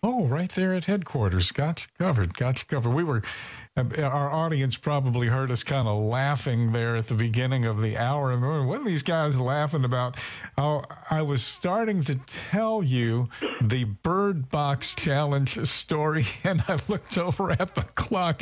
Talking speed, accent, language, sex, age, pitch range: 175 wpm, American, English, male, 50-69, 115-150 Hz